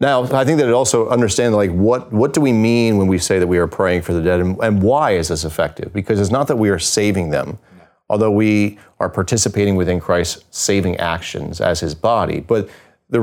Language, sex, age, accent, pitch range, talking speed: English, male, 30-49, American, 90-110 Hz, 225 wpm